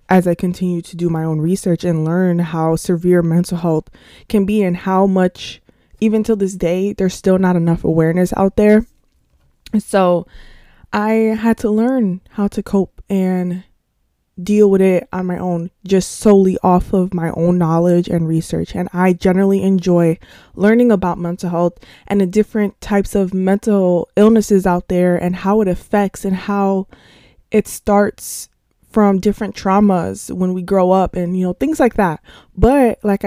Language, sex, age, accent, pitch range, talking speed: English, female, 20-39, American, 180-205 Hz, 170 wpm